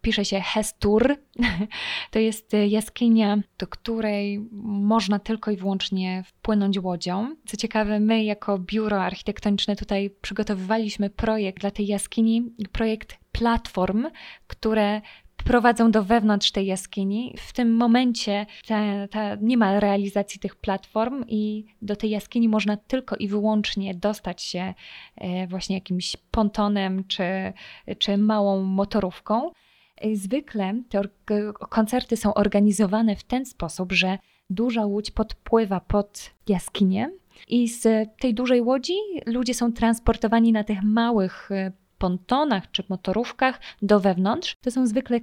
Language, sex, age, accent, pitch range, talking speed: Polish, female, 20-39, native, 195-225 Hz, 120 wpm